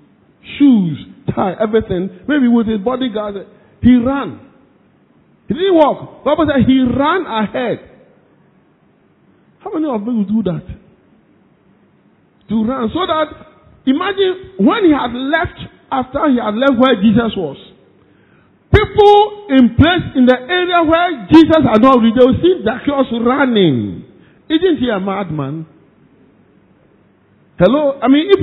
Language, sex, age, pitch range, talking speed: English, male, 50-69, 220-305 Hz, 135 wpm